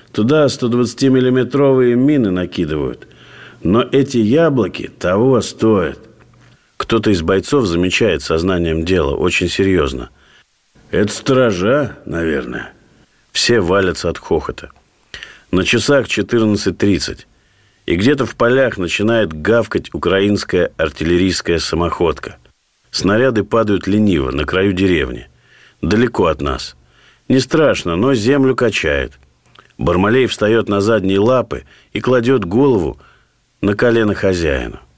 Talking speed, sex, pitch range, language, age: 105 wpm, male, 95-125 Hz, Russian, 50-69